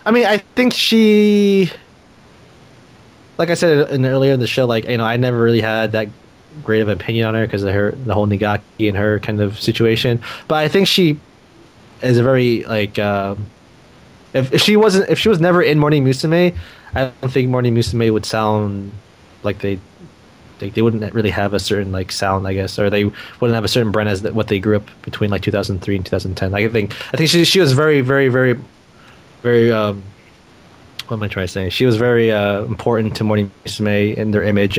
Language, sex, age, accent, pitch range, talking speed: English, male, 20-39, American, 100-125 Hz, 215 wpm